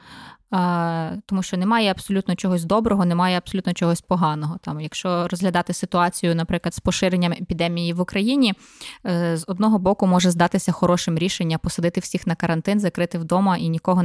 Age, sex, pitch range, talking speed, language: 20-39, female, 170-215 Hz, 150 wpm, Ukrainian